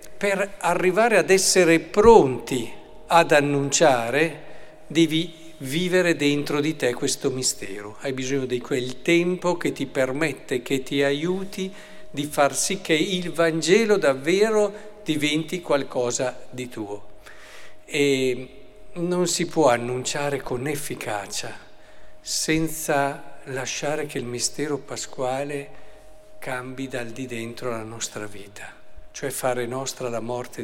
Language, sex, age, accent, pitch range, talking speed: Italian, male, 50-69, native, 125-165 Hz, 120 wpm